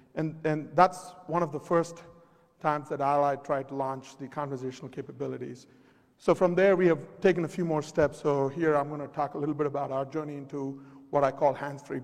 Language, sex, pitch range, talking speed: English, male, 140-175 Hz, 215 wpm